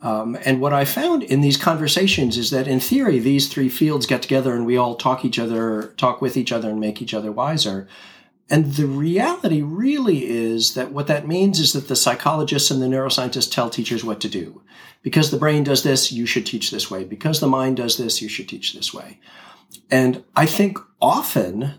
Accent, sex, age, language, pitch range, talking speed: American, male, 40-59, English, 115-150 Hz, 210 wpm